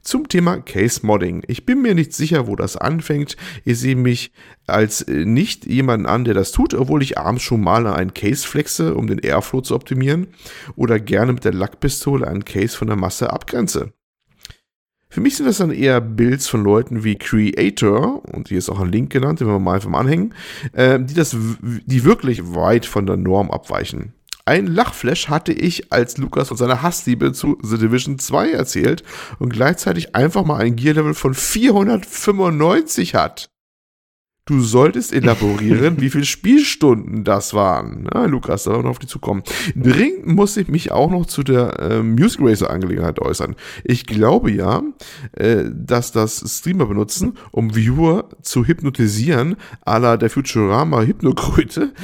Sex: male